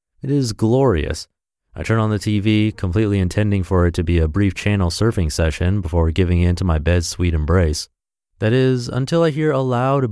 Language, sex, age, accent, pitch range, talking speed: English, male, 30-49, American, 90-125 Hz, 200 wpm